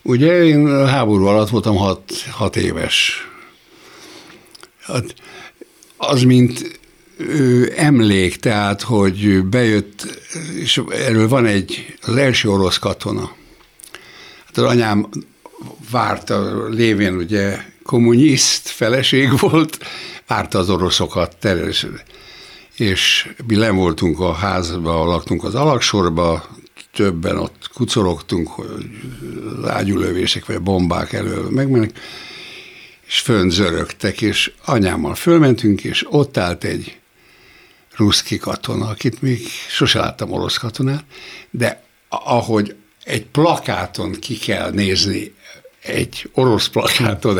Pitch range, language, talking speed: 95-130 Hz, Hungarian, 105 wpm